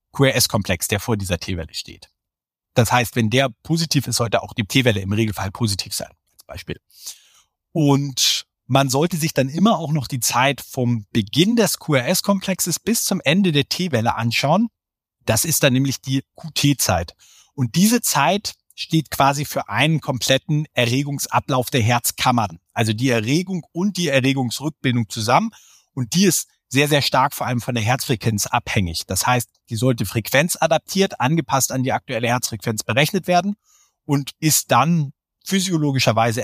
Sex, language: male, German